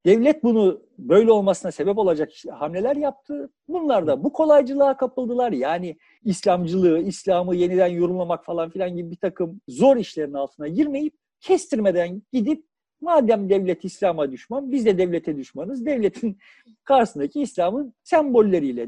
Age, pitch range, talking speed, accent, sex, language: 50-69, 170-270 Hz, 130 wpm, native, male, Turkish